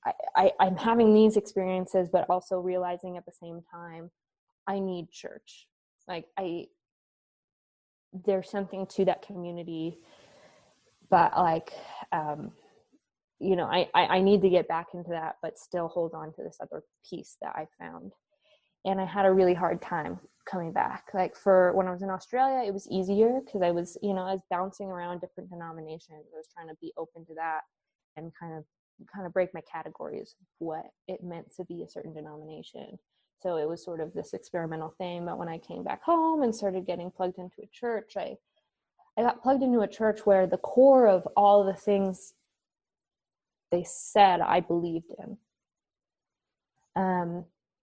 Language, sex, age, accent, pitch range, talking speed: English, female, 20-39, American, 170-200 Hz, 180 wpm